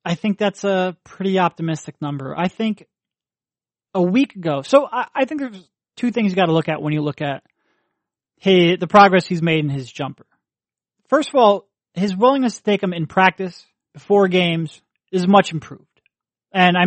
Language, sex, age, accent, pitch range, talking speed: English, male, 30-49, American, 160-200 Hz, 190 wpm